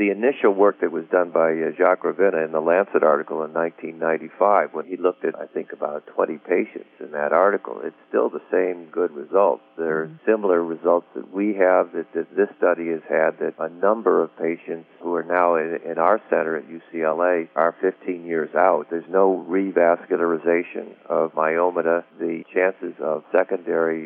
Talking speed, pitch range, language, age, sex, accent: 175 wpm, 80-90 Hz, English, 50-69, male, American